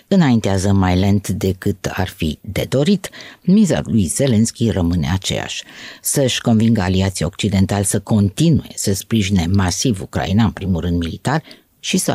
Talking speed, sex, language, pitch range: 145 wpm, female, Romanian, 95-125 Hz